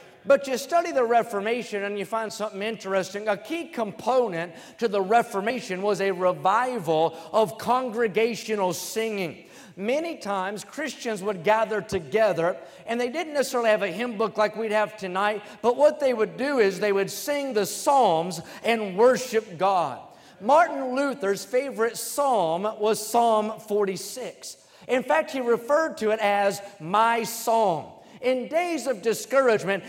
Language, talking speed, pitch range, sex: English, 150 wpm, 205-255 Hz, male